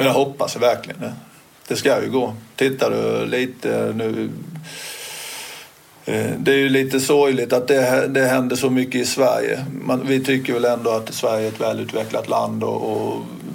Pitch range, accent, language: 110-130 Hz, Swedish, English